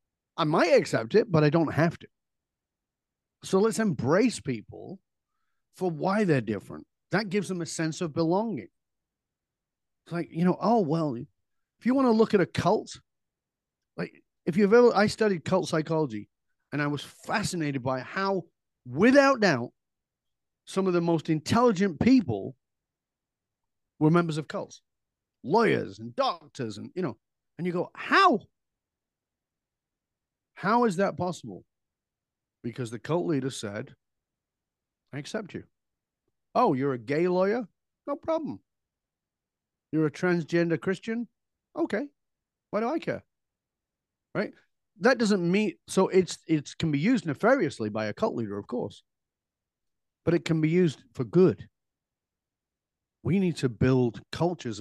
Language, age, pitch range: English, 40-59, 130-190 Hz